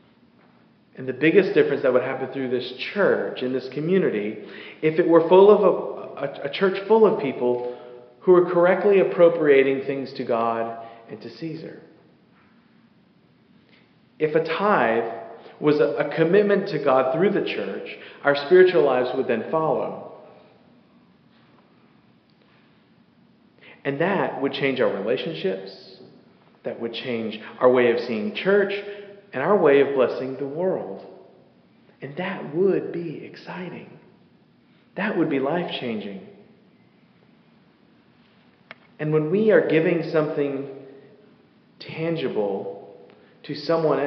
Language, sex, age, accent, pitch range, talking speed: English, male, 40-59, American, 125-175 Hz, 125 wpm